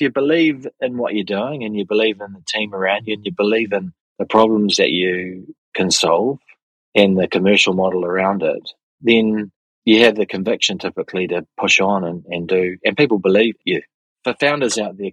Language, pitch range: English, 95-120 Hz